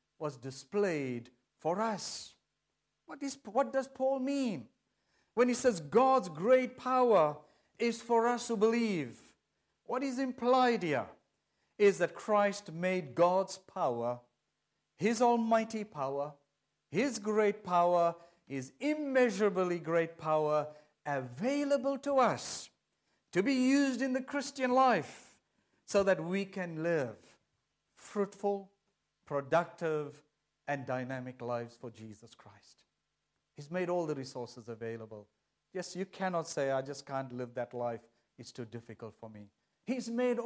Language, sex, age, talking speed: English, male, 50-69, 130 wpm